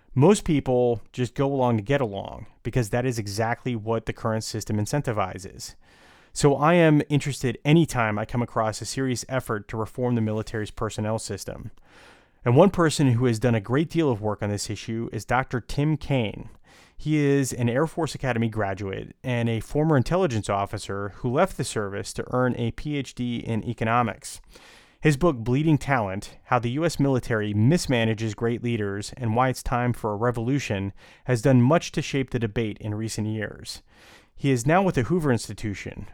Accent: American